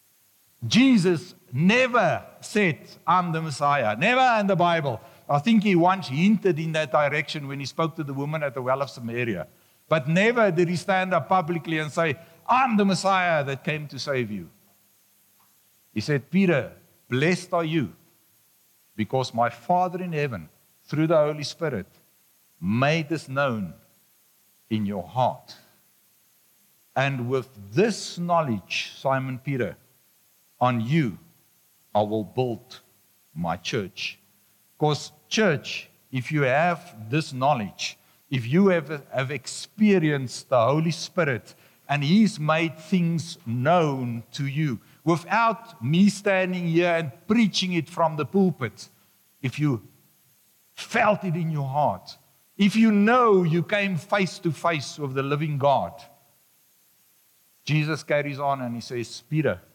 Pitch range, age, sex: 135-180 Hz, 60-79, male